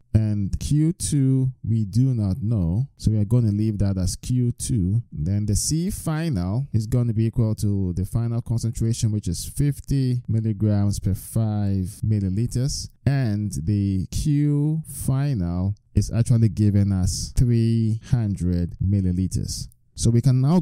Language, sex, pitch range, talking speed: English, male, 95-120 Hz, 145 wpm